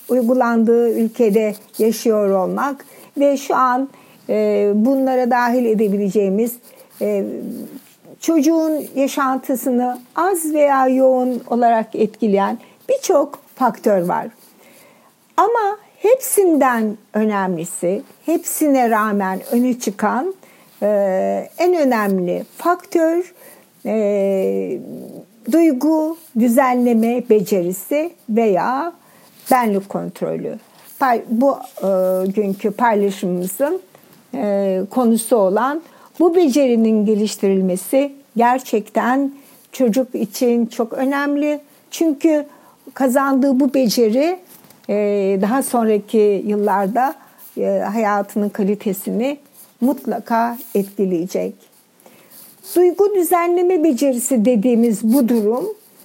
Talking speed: 80 wpm